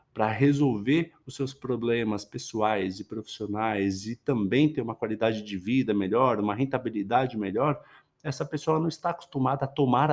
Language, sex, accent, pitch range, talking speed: Portuguese, male, Brazilian, 115-160 Hz, 155 wpm